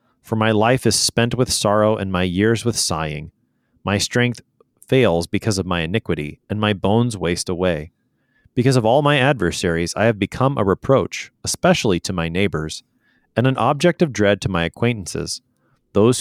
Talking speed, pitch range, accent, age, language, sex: 175 wpm, 90-125 Hz, American, 30-49, English, male